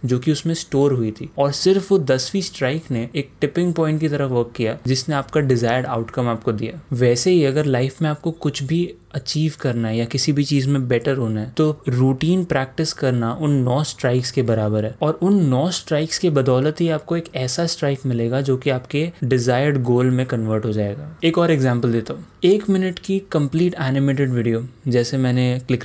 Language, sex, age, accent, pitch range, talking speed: Hindi, male, 20-39, native, 125-160 Hz, 205 wpm